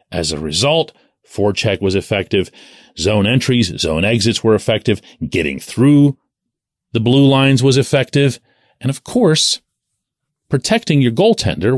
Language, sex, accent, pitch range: English, male, American, 110-150 Hz